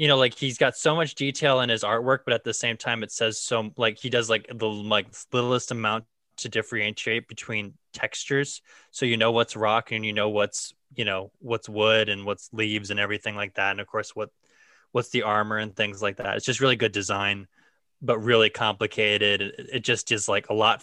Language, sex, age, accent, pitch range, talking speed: English, male, 20-39, American, 105-125 Hz, 220 wpm